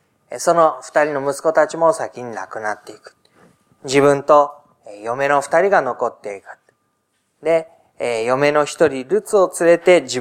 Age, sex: 20-39, male